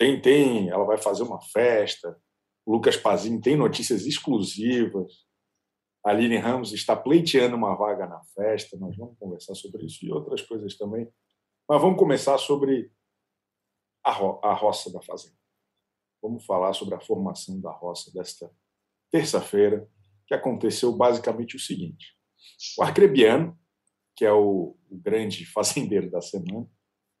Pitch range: 100-125 Hz